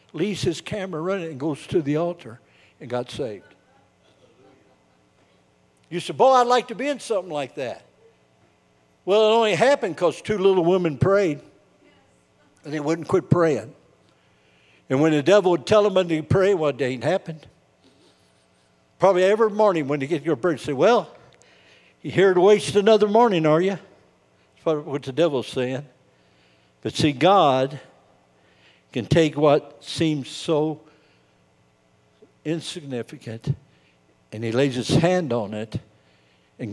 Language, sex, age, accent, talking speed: English, male, 60-79, American, 150 wpm